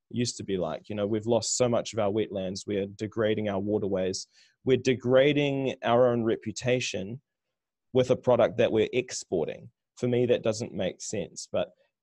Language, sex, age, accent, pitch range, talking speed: English, male, 20-39, Australian, 105-125 Hz, 180 wpm